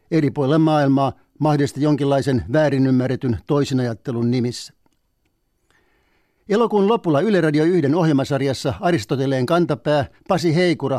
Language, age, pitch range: Finnish, 60-79, 135-160 Hz